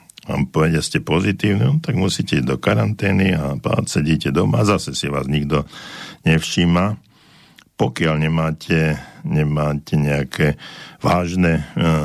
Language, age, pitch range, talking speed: Slovak, 60-79, 75-90 Hz, 120 wpm